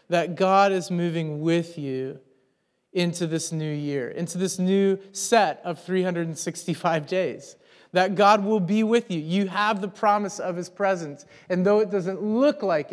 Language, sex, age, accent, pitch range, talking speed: English, male, 30-49, American, 175-215 Hz, 165 wpm